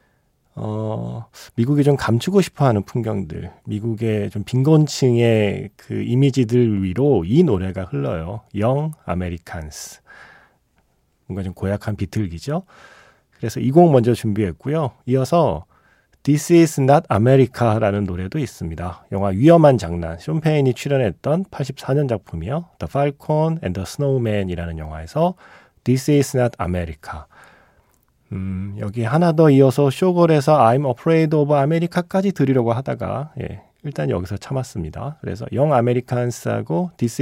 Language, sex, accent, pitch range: Korean, male, native, 100-145 Hz